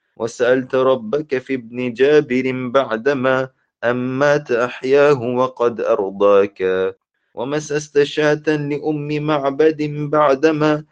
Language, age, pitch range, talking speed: Turkish, 30-49, 125-145 Hz, 75 wpm